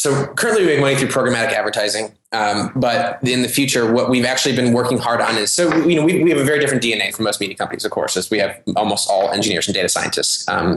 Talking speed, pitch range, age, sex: 265 wpm, 110-130 Hz, 20-39, male